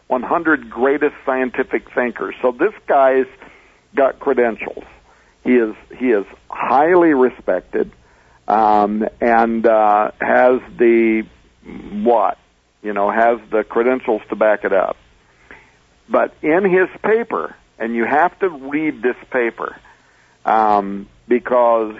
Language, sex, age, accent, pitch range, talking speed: English, male, 60-79, American, 110-135 Hz, 115 wpm